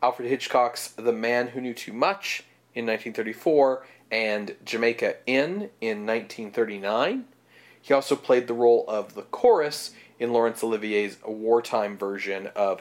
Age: 40-59